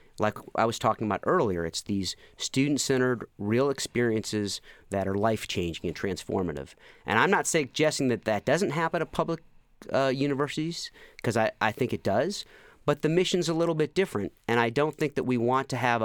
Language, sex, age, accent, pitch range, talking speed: English, male, 40-59, American, 110-145 Hz, 185 wpm